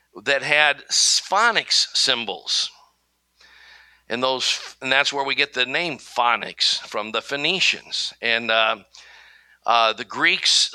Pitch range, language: 115-160 Hz, English